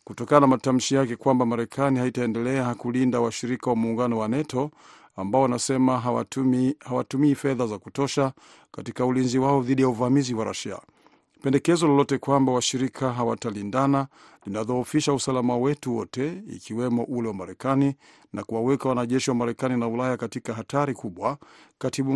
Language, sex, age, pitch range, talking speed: Swahili, male, 50-69, 120-140 Hz, 140 wpm